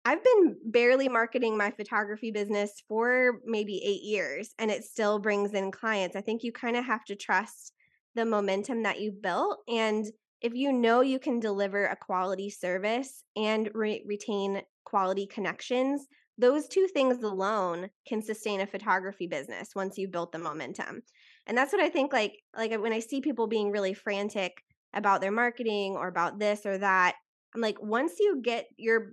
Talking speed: 175 wpm